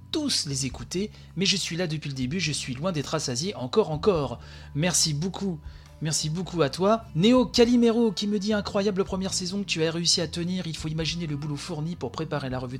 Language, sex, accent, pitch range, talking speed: French, male, French, 145-195 Hz, 220 wpm